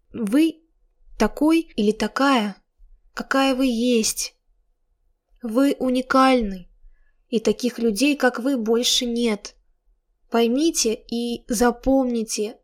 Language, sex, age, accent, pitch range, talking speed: Russian, female, 20-39, native, 220-255 Hz, 90 wpm